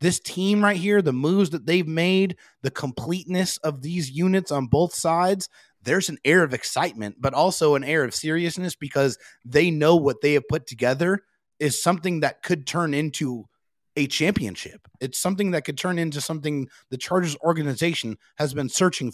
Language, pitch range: English, 125-170 Hz